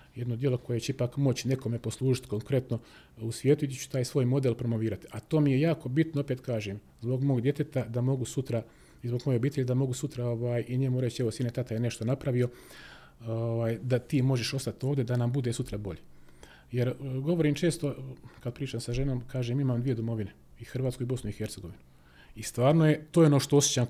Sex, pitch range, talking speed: male, 115-145 Hz, 210 wpm